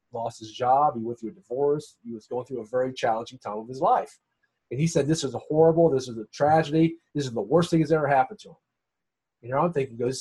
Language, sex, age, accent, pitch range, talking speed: English, male, 40-59, American, 125-175 Hz, 265 wpm